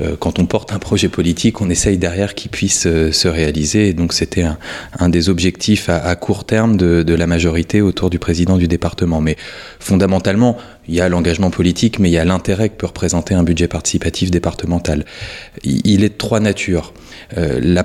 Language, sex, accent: French, male, French